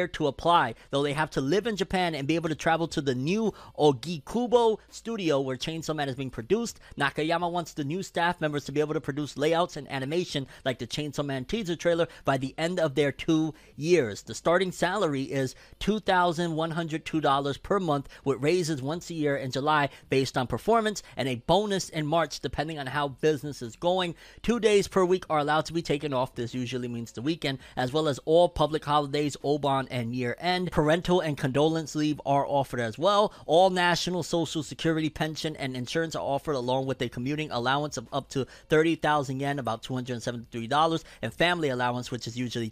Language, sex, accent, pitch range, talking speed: English, male, American, 135-170 Hz, 205 wpm